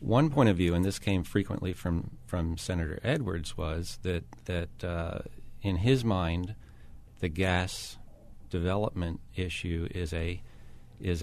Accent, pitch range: American, 85-105 Hz